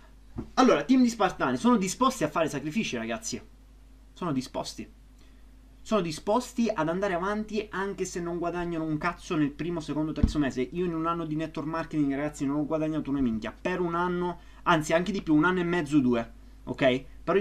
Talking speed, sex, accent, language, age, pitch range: 190 wpm, male, native, Italian, 30-49, 130-175 Hz